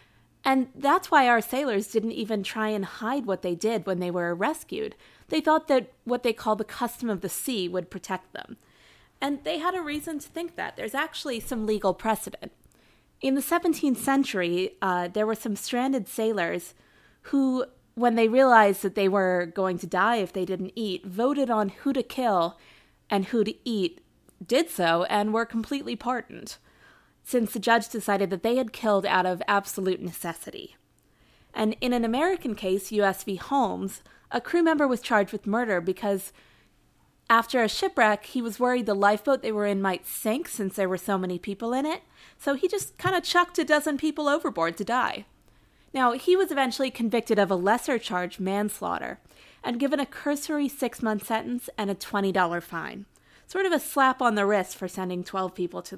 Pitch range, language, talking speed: 195-265 Hz, English, 190 wpm